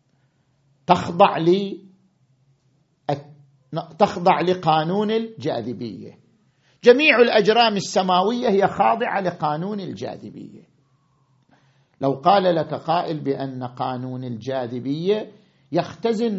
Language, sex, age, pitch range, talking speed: Arabic, male, 50-69, 140-205 Hz, 70 wpm